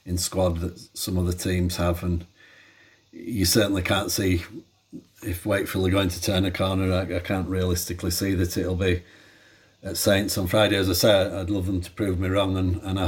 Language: English